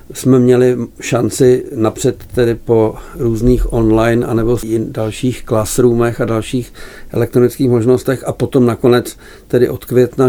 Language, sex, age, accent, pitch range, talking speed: Czech, male, 50-69, native, 115-130 Hz, 130 wpm